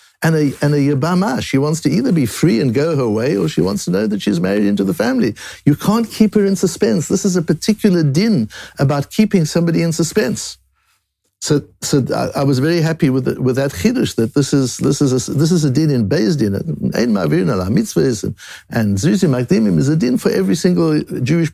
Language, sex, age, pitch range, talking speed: English, male, 60-79, 120-155 Hz, 215 wpm